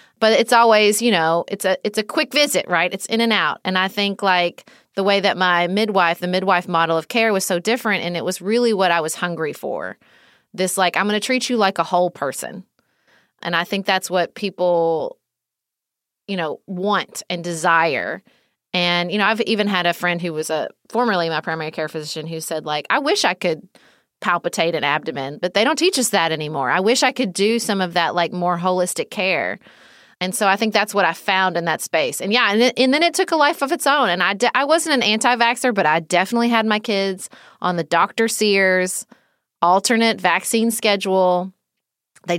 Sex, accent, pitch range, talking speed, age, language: female, American, 175-225 Hz, 215 wpm, 30-49, English